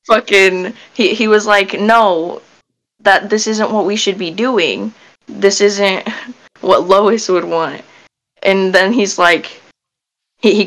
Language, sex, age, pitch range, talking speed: English, female, 10-29, 195-255 Hz, 145 wpm